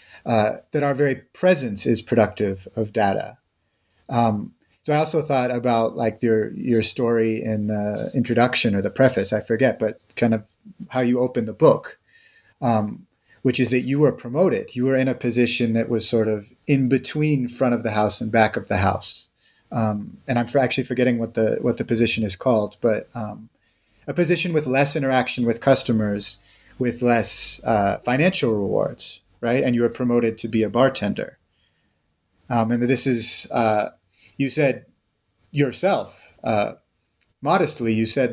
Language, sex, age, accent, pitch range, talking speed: English, male, 30-49, American, 110-130 Hz, 170 wpm